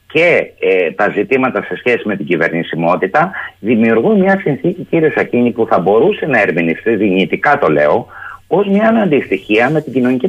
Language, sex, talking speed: Greek, male, 155 wpm